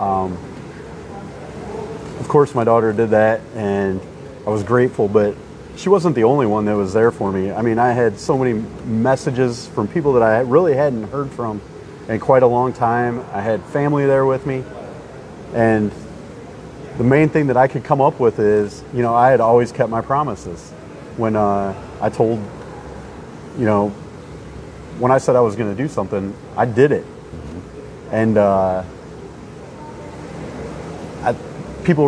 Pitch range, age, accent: 105-130 Hz, 30-49, American